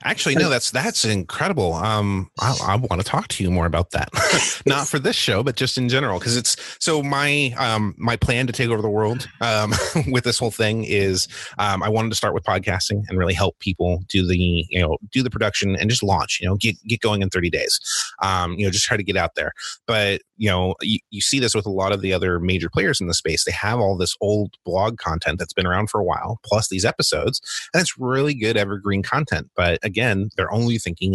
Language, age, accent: English, 30-49, American